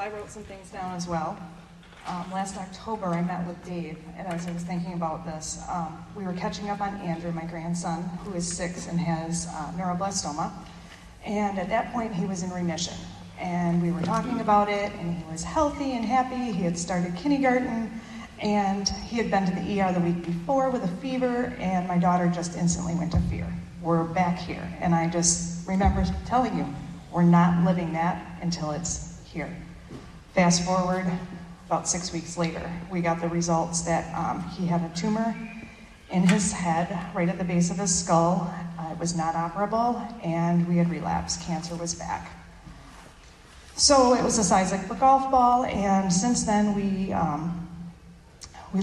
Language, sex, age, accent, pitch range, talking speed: English, female, 40-59, American, 170-200 Hz, 185 wpm